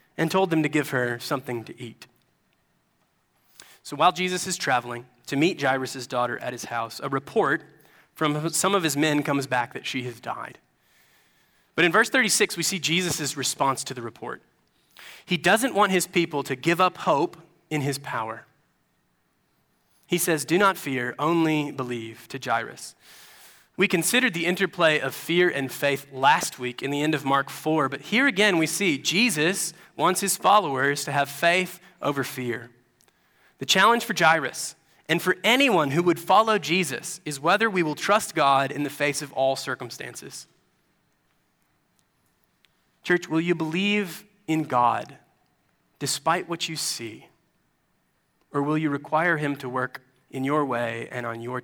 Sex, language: male, English